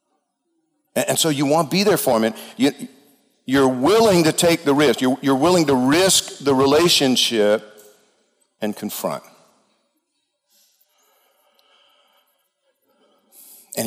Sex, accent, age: male, American, 50-69